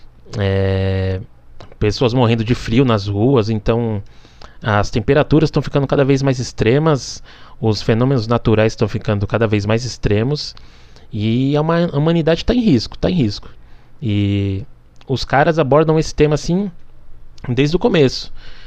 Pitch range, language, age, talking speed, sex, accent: 105-140 Hz, Portuguese, 20-39, 140 wpm, male, Brazilian